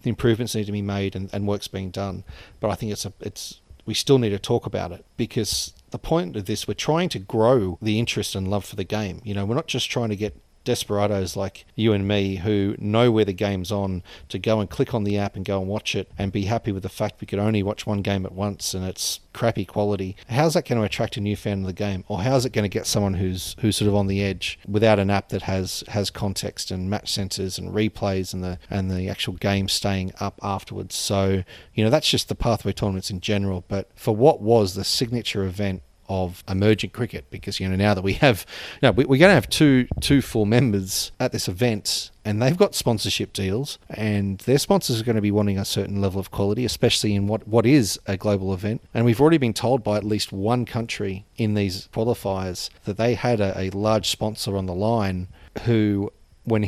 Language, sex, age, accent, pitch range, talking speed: English, male, 40-59, Australian, 95-115 Hz, 240 wpm